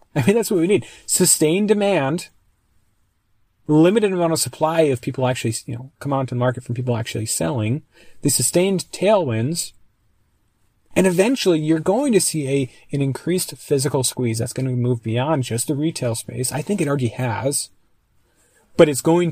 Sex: male